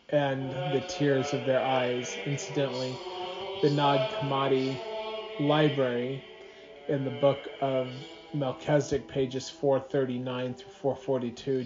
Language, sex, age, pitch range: English, male, 30-49, 130-160 Hz